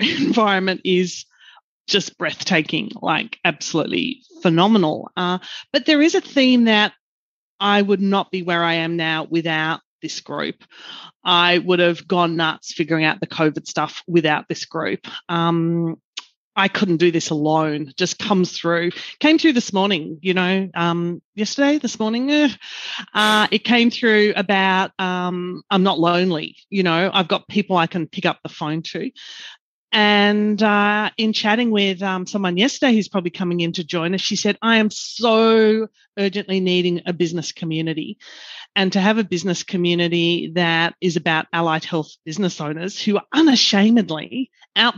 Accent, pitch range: Australian, 170-210 Hz